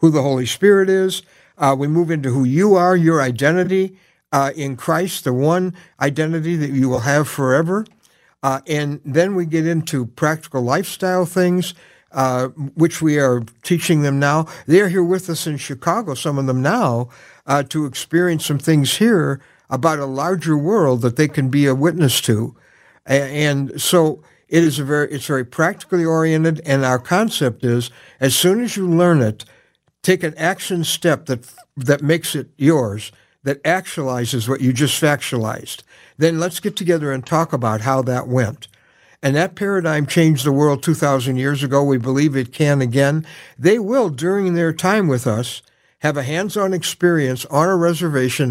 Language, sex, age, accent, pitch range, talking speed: English, male, 60-79, American, 135-170 Hz, 170 wpm